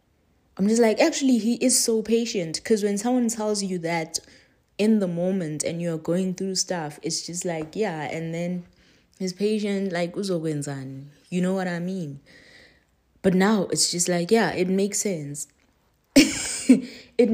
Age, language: 20-39, English